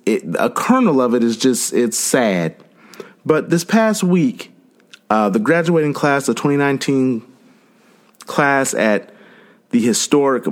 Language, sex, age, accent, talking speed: English, male, 30-49, American, 125 wpm